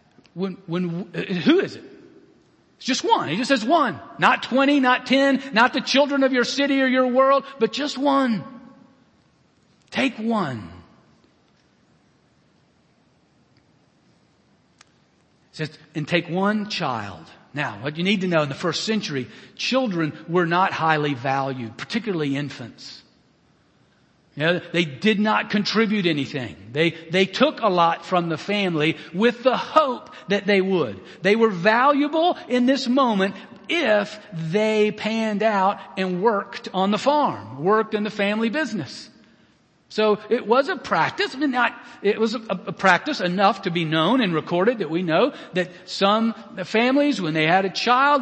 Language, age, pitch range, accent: English, 50-69, 165-235 Hz, American